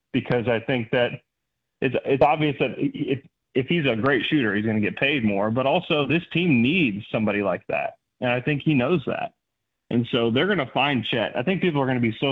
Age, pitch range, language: 30-49, 120-145 Hz, English